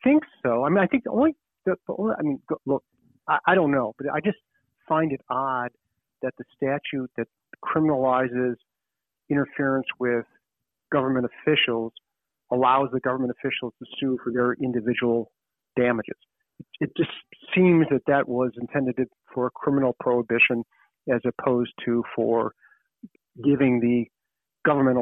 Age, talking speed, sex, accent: 40-59, 145 wpm, male, American